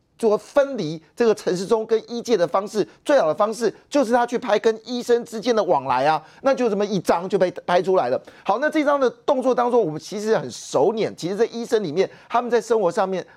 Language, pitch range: Chinese, 195-245 Hz